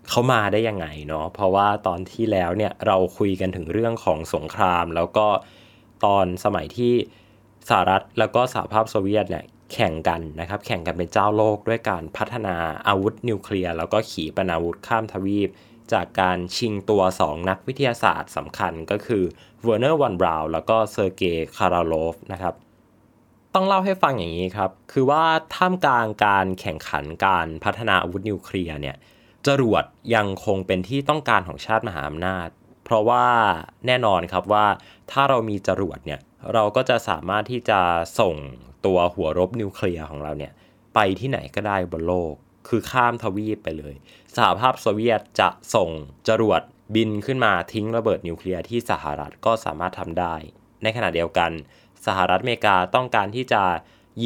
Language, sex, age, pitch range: Thai, male, 20-39, 90-110 Hz